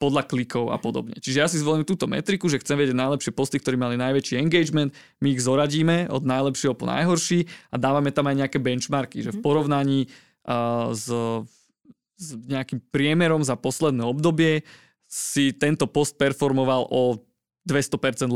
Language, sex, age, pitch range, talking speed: Slovak, male, 20-39, 130-150 Hz, 155 wpm